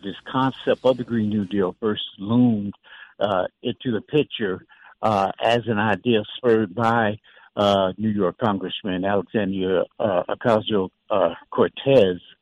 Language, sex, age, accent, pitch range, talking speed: English, male, 60-79, American, 100-125 Hz, 125 wpm